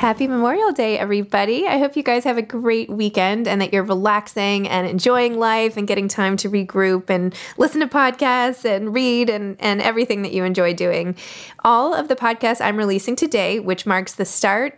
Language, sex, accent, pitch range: English, female, American, 180-235 Hz